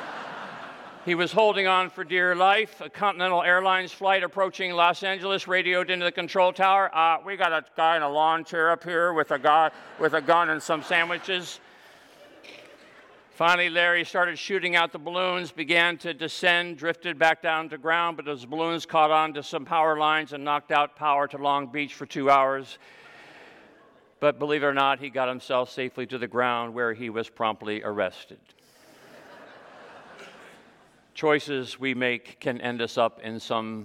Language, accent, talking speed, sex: English, American, 175 wpm, male